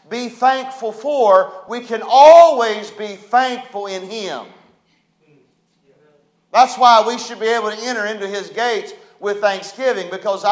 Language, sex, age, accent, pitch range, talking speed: English, male, 40-59, American, 190-260 Hz, 135 wpm